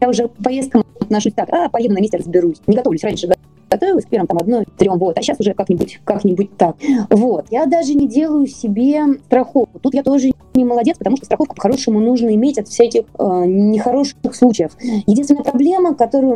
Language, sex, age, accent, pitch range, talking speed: Russian, female, 20-39, native, 235-300 Hz, 195 wpm